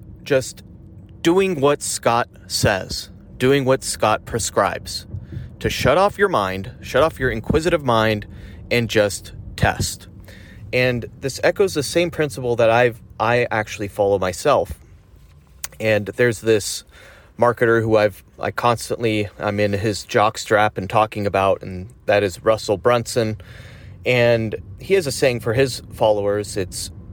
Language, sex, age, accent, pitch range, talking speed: English, male, 30-49, American, 95-120 Hz, 140 wpm